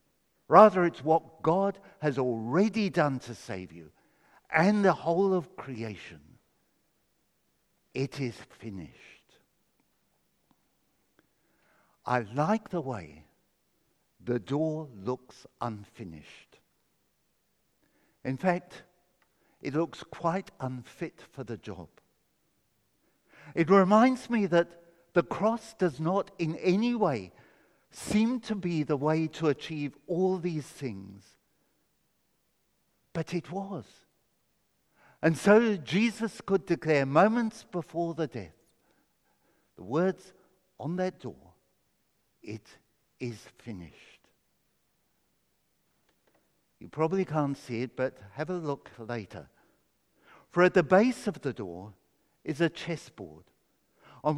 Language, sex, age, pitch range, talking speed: English, male, 60-79, 125-185 Hz, 105 wpm